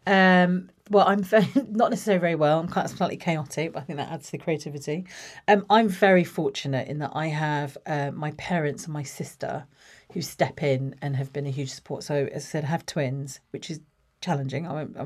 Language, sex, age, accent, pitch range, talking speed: English, female, 40-59, British, 140-175 Hz, 220 wpm